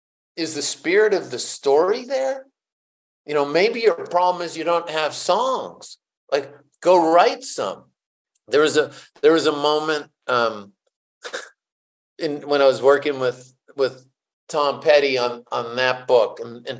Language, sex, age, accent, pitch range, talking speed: English, male, 50-69, American, 125-205 Hz, 155 wpm